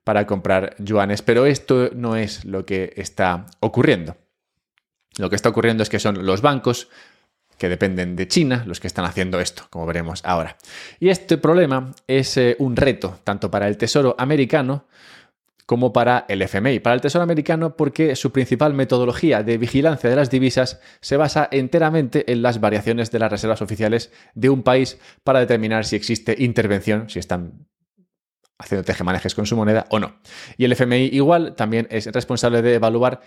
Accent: Spanish